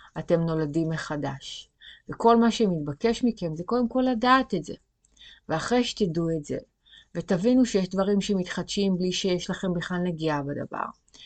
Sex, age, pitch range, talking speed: female, 30-49, 165-215 Hz, 145 wpm